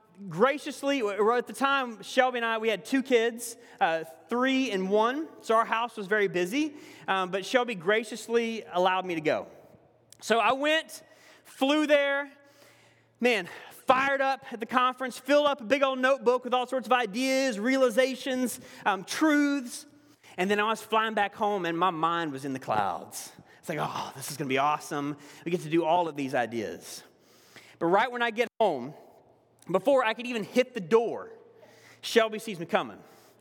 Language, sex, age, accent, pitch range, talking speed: English, male, 30-49, American, 205-270 Hz, 185 wpm